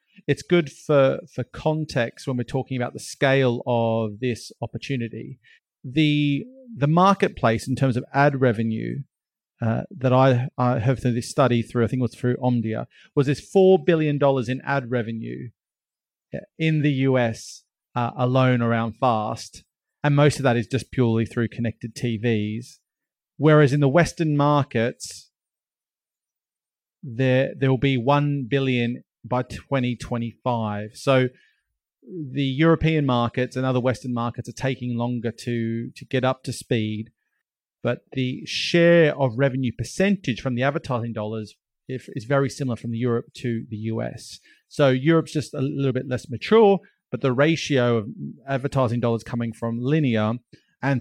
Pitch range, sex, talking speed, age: 115-140 Hz, male, 155 wpm, 40-59